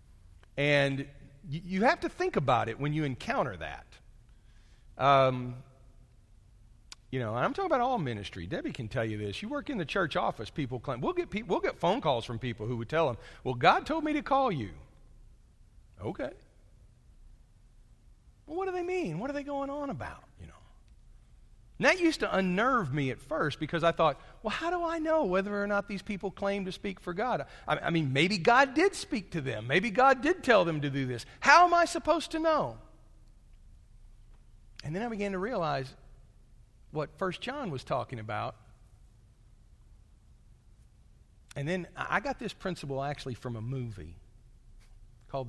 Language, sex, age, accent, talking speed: English, male, 40-59, American, 180 wpm